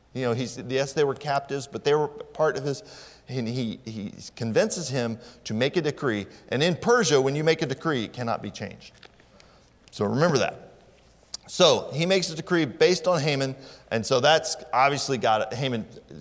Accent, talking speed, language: American, 190 wpm, English